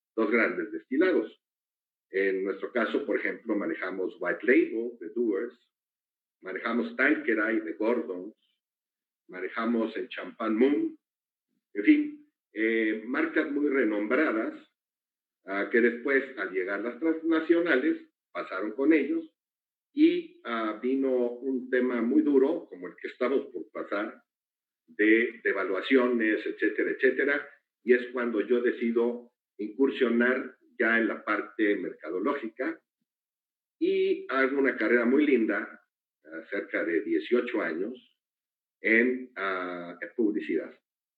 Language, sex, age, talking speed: Spanish, male, 50-69, 115 wpm